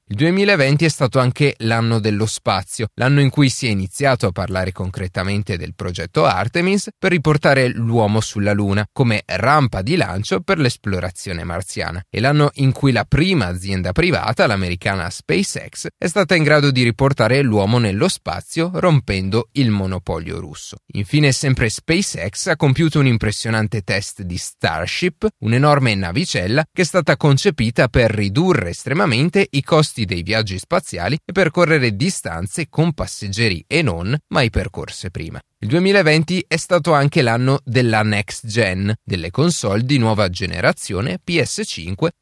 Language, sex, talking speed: Italian, male, 150 wpm